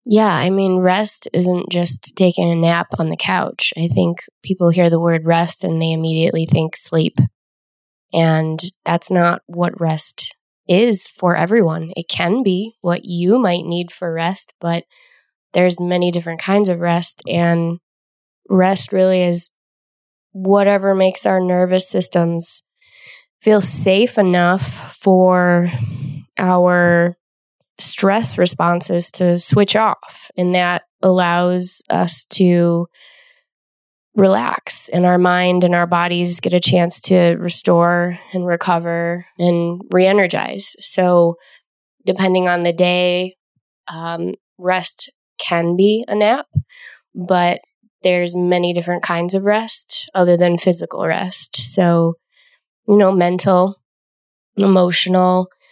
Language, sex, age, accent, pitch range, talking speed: English, female, 20-39, American, 170-185 Hz, 125 wpm